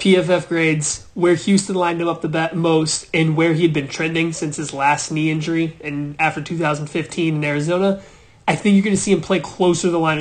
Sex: male